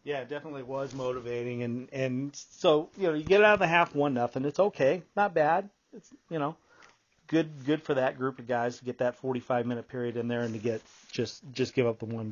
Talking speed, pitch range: 240 wpm, 125-150 Hz